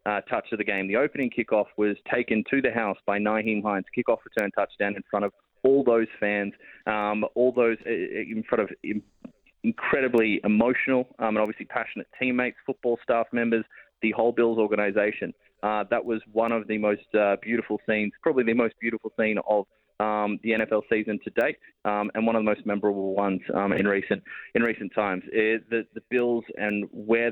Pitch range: 105-115 Hz